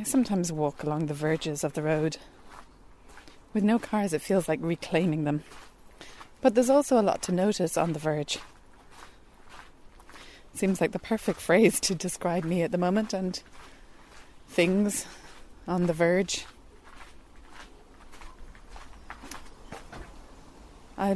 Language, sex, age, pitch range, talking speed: English, female, 30-49, 150-195 Hz, 125 wpm